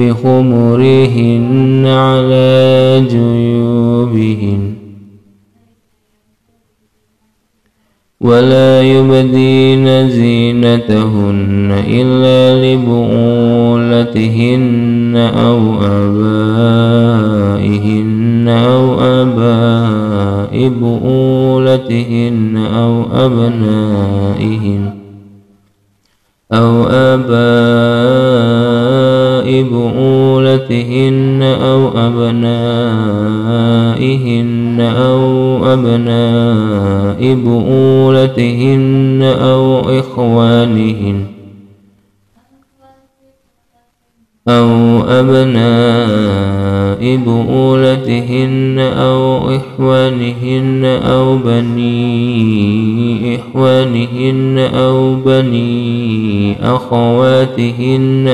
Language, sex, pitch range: Indonesian, male, 110-130 Hz